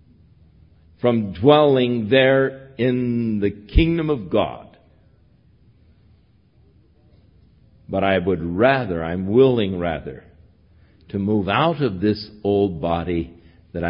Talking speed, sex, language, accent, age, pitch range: 100 wpm, male, English, American, 60-79, 85-130 Hz